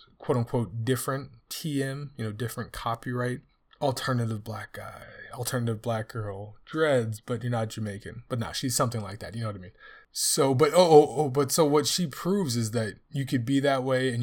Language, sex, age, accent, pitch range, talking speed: English, male, 20-39, American, 110-130 Hz, 205 wpm